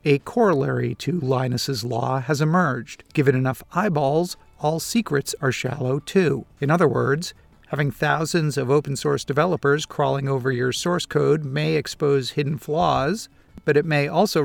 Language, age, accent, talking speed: English, 50-69, American, 155 wpm